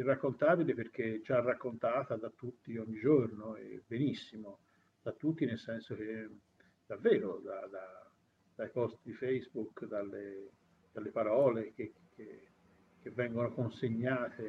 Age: 50-69